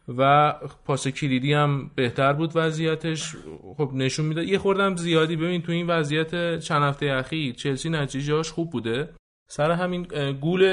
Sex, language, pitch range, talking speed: male, Persian, 130-155 Hz, 150 wpm